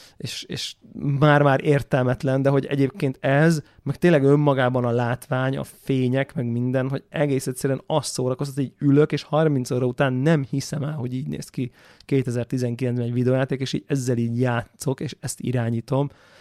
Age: 30-49